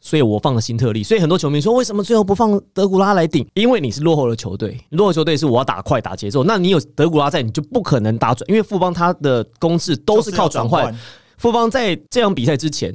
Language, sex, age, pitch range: Chinese, male, 30-49, 115-150 Hz